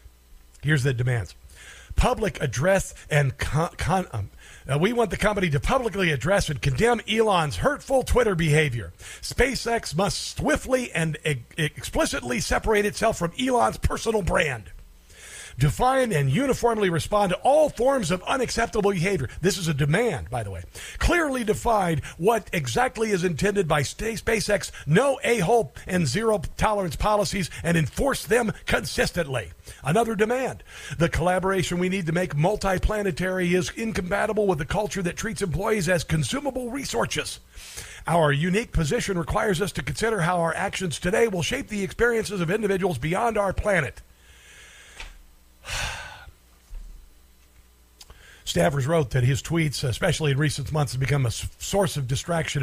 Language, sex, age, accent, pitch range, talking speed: English, male, 50-69, American, 140-210 Hz, 140 wpm